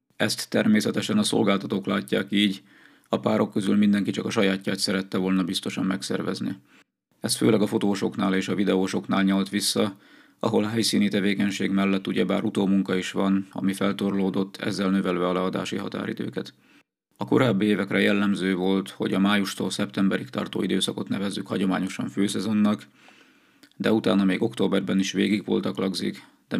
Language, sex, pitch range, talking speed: Hungarian, male, 95-100 Hz, 145 wpm